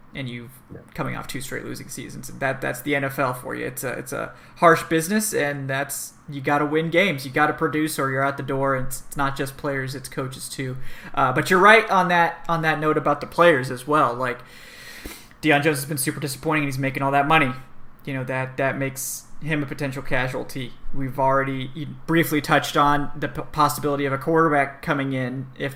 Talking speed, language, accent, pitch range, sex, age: 215 wpm, English, American, 135-155 Hz, male, 20-39